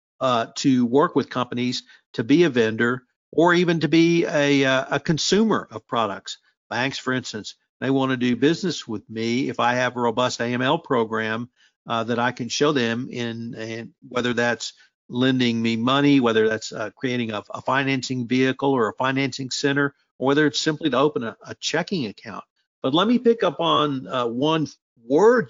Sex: male